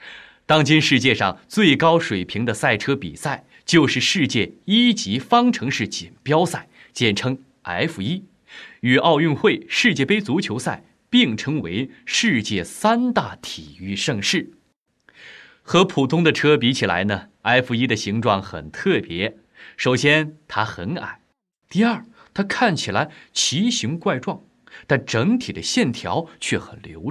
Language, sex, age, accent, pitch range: Chinese, male, 20-39, native, 125-205 Hz